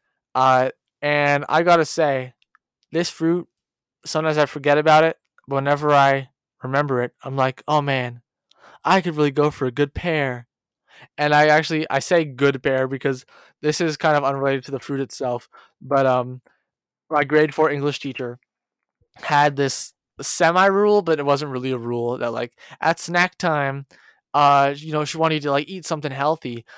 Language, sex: English, male